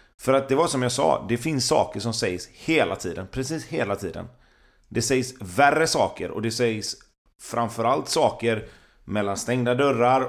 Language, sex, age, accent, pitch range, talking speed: Swedish, male, 30-49, native, 115-145 Hz, 170 wpm